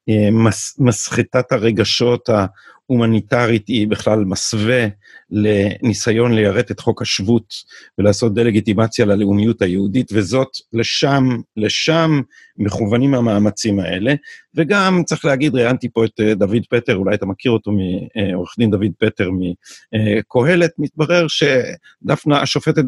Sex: male